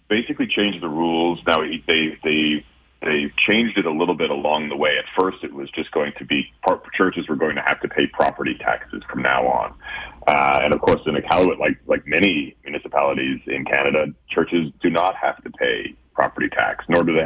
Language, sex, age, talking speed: English, male, 40-59, 210 wpm